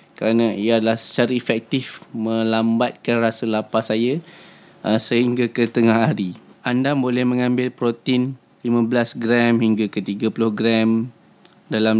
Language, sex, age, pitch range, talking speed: Indonesian, male, 20-39, 110-125 Hz, 125 wpm